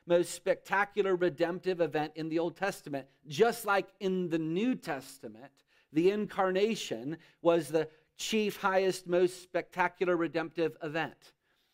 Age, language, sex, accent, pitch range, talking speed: 30-49, English, male, American, 150-190 Hz, 125 wpm